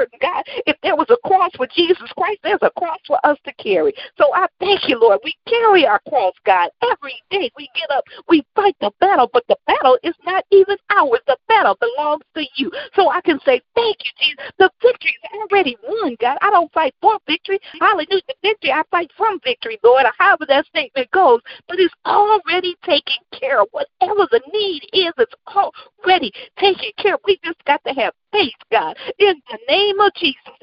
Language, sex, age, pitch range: English, female, 50-69, 310-430 Hz